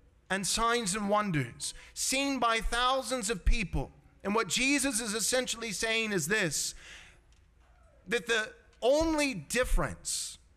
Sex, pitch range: male, 195-250 Hz